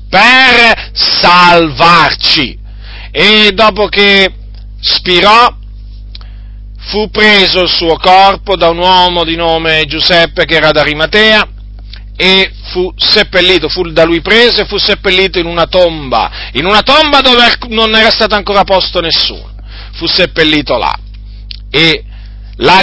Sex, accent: male, native